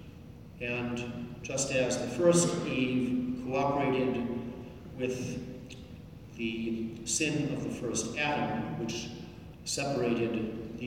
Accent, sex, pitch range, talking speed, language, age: American, male, 115-130 Hz, 95 wpm, English, 40-59